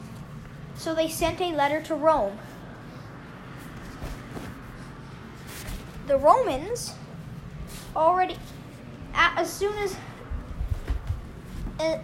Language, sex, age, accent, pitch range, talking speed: English, female, 10-29, American, 305-375 Hz, 70 wpm